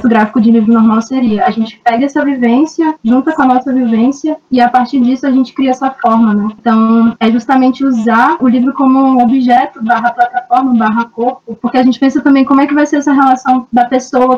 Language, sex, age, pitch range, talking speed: Portuguese, female, 10-29, 225-255 Hz, 215 wpm